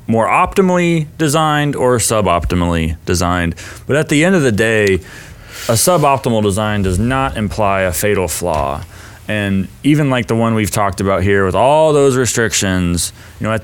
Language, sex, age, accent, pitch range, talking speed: English, male, 30-49, American, 105-145 Hz, 165 wpm